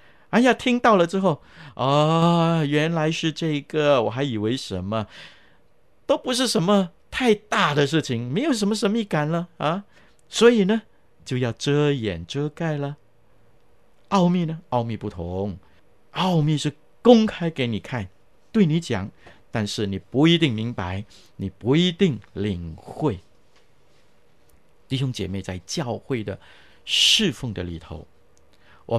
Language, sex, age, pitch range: Chinese, male, 50-69, 105-175 Hz